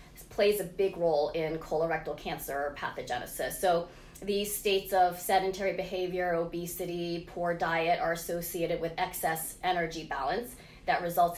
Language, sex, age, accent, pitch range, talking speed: English, female, 20-39, American, 165-185 Hz, 130 wpm